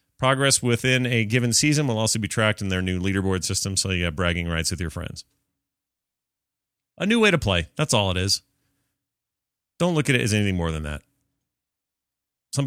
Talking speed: 195 wpm